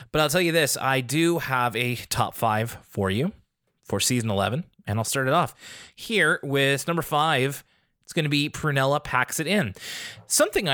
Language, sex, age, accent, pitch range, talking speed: English, male, 20-39, American, 115-165 Hz, 190 wpm